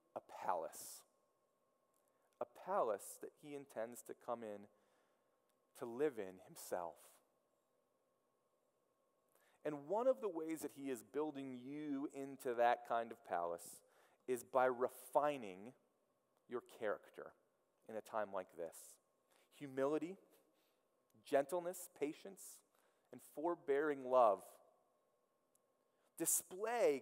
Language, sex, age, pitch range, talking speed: English, male, 30-49, 145-195 Hz, 100 wpm